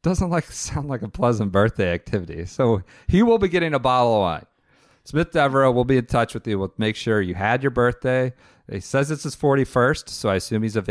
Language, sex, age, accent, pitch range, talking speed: English, male, 40-59, American, 100-135 Hz, 230 wpm